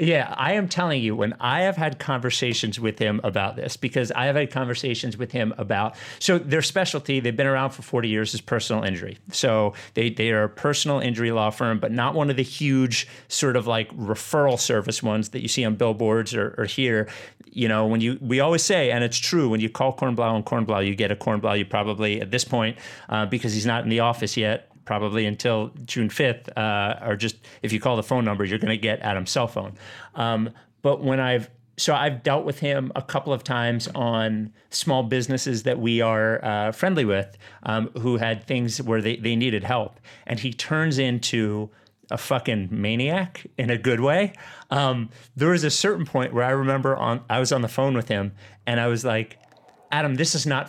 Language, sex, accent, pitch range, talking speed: English, male, American, 110-135 Hz, 215 wpm